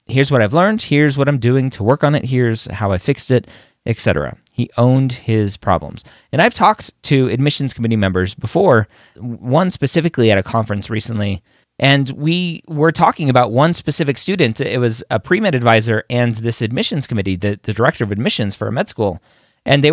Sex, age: male, 30-49